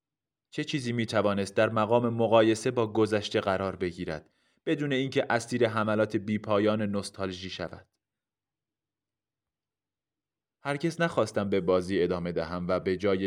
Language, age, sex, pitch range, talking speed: Persian, 30-49, male, 95-120 Hz, 120 wpm